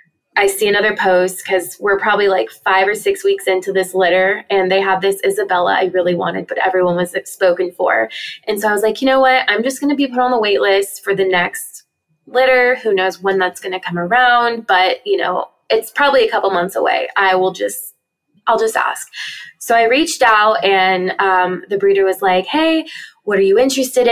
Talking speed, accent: 220 wpm, American